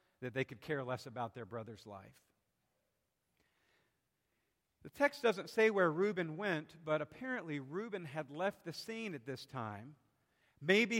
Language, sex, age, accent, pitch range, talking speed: English, male, 50-69, American, 150-205 Hz, 145 wpm